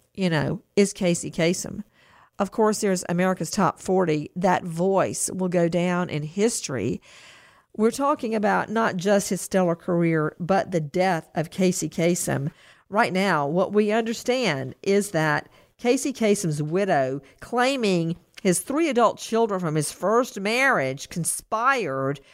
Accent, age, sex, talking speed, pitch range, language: American, 50-69, female, 140 wpm, 160-215 Hz, English